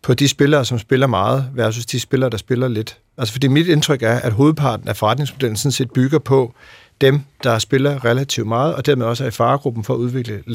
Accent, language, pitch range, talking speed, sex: native, Danish, 115-140 Hz, 220 wpm, male